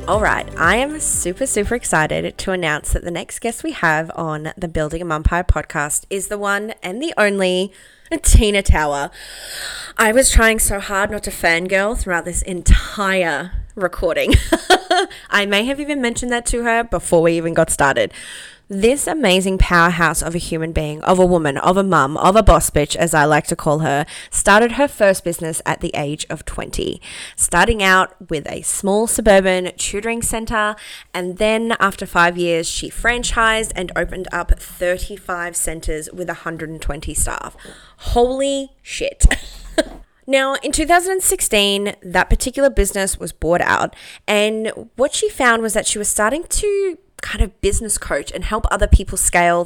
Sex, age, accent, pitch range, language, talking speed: female, 20-39, Australian, 170-225 Hz, English, 170 wpm